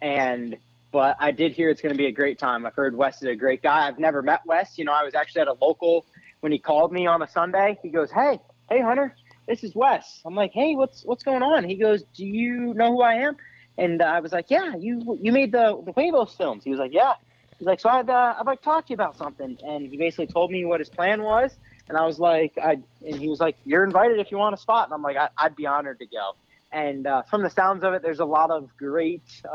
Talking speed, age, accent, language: 275 wpm, 30-49, American, English